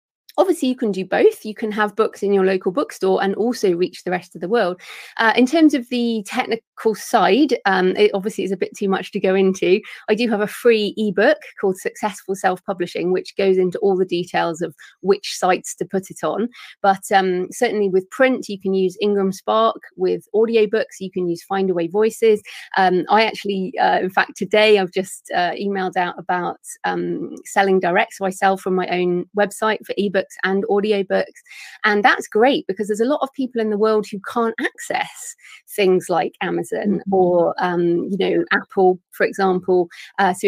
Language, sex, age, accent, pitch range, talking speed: English, female, 30-49, British, 185-220 Hz, 200 wpm